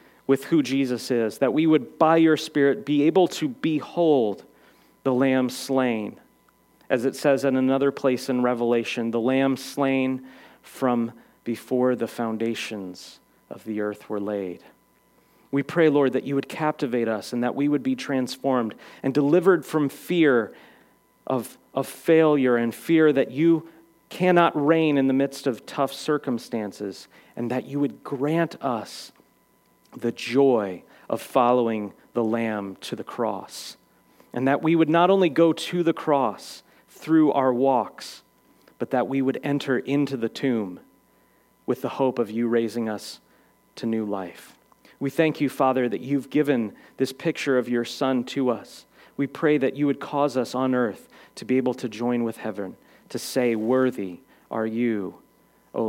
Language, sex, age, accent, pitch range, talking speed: English, male, 40-59, American, 115-145 Hz, 165 wpm